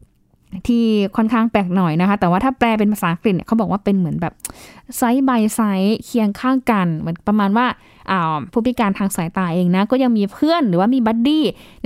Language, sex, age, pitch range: Thai, female, 20-39, 195-250 Hz